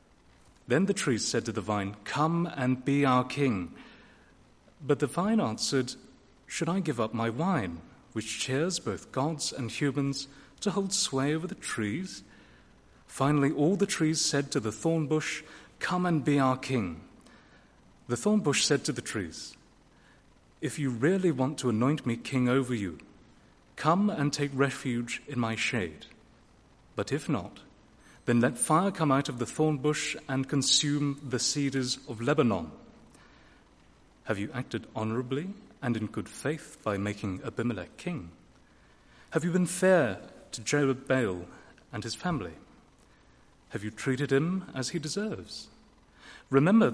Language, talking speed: English, 150 wpm